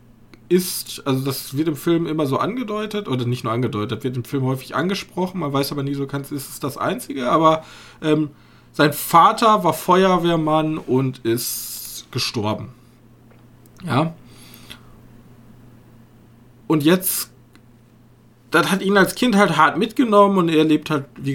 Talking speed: 150 wpm